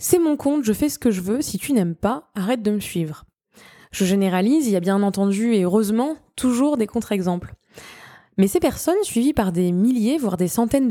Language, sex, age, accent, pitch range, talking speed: French, female, 20-39, French, 200-265 Hz, 215 wpm